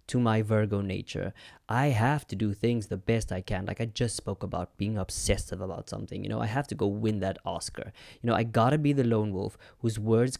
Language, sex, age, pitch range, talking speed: English, male, 20-39, 105-125 Hz, 235 wpm